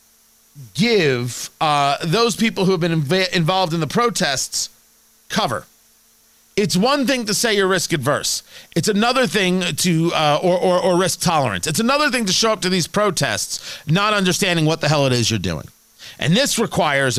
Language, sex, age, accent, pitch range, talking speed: English, male, 40-59, American, 145-190 Hz, 180 wpm